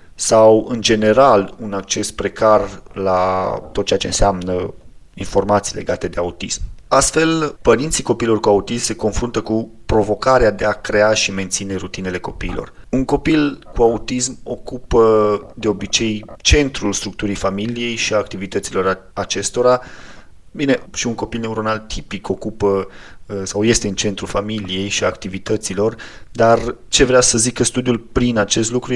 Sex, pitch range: male, 100-120 Hz